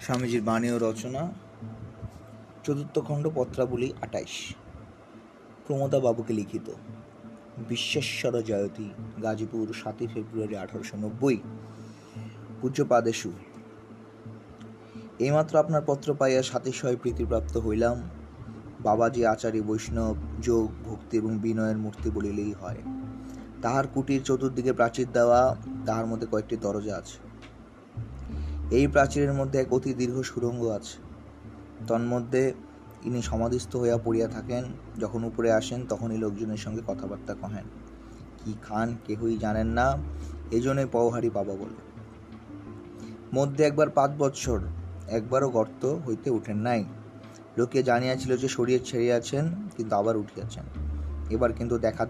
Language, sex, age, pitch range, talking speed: Bengali, male, 30-49, 110-125 Hz, 75 wpm